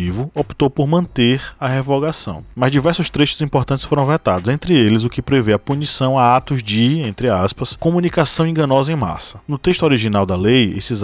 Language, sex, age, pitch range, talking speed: Portuguese, male, 20-39, 115-140 Hz, 180 wpm